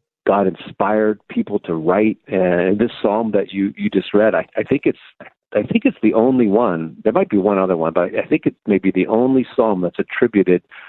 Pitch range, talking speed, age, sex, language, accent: 95-115 Hz, 220 wpm, 50-69, male, English, American